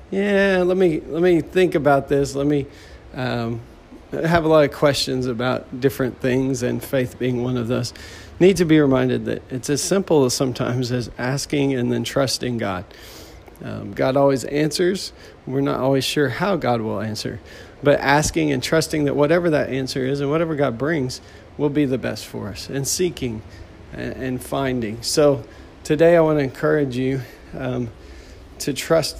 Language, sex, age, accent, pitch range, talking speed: English, male, 40-59, American, 120-150 Hz, 180 wpm